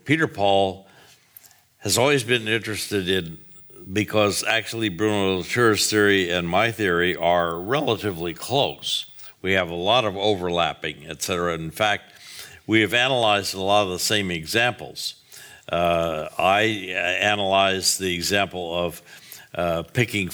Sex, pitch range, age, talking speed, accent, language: male, 85-105 Hz, 60-79, 135 wpm, American, Dutch